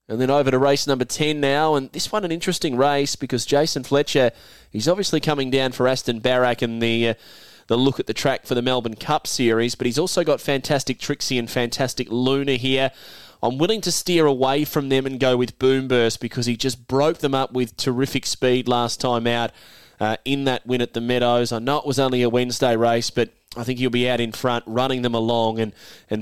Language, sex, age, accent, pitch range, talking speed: English, male, 20-39, Australian, 120-140 Hz, 225 wpm